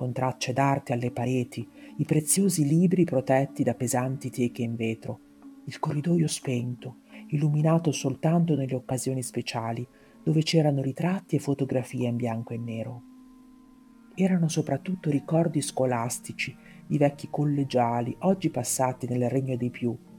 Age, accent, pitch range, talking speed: 40-59, native, 125-155 Hz, 130 wpm